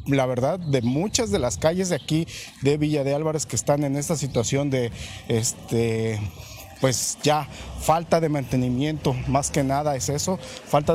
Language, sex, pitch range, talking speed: Spanish, male, 125-155 Hz, 170 wpm